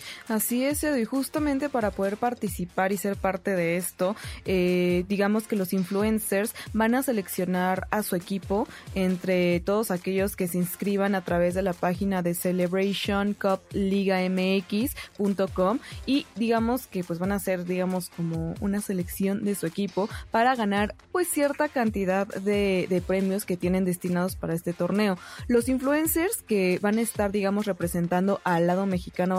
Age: 20-39